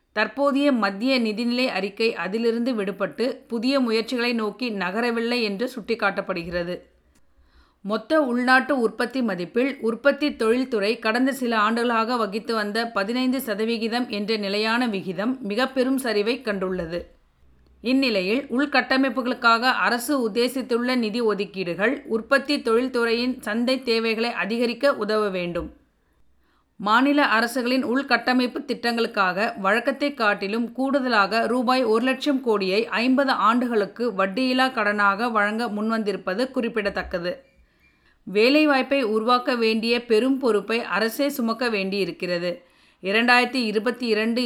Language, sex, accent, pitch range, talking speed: Tamil, female, native, 210-255 Hz, 100 wpm